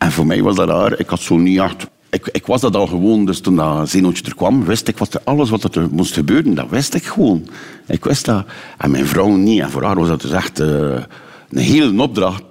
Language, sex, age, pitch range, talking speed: Dutch, male, 60-79, 80-100 Hz, 245 wpm